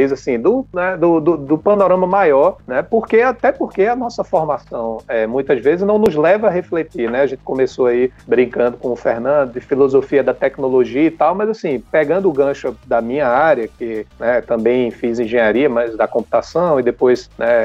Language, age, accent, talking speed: Portuguese, 40-59, Brazilian, 195 wpm